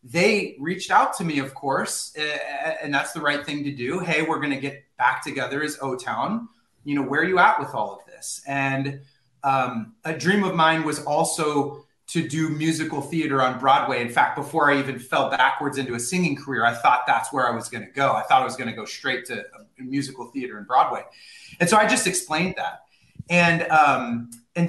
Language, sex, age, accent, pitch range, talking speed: English, male, 30-49, American, 135-170 Hz, 220 wpm